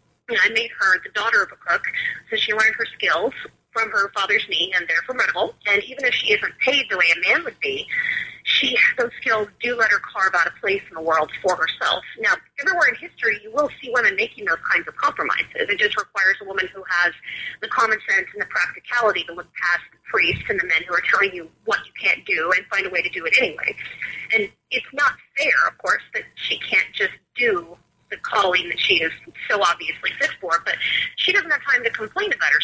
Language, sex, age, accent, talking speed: English, female, 30-49, American, 230 wpm